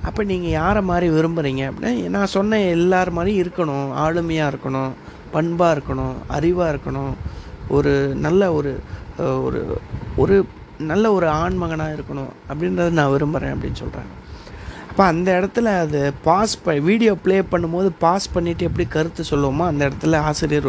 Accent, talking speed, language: native, 140 wpm, Tamil